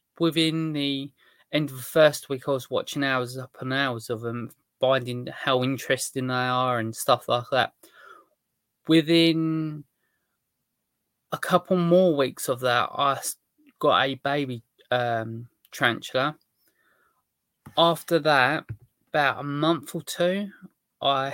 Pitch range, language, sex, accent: 125-160 Hz, English, male, British